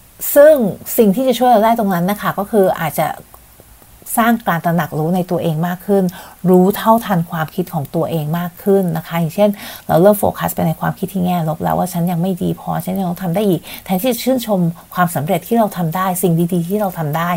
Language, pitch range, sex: Thai, 165-200 Hz, female